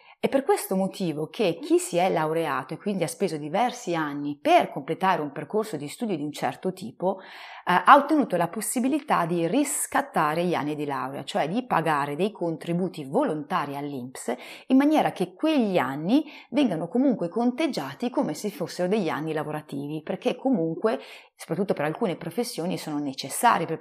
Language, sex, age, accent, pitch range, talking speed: Italian, female, 30-49, native, 155-220 Hz, 165 wpm